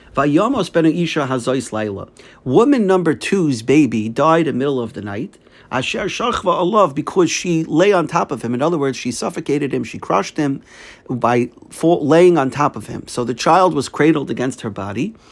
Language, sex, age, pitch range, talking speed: English, male, 50-69, 130-175 Hz, 160 wpm